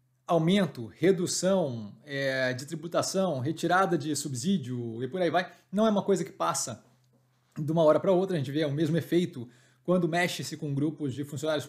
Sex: male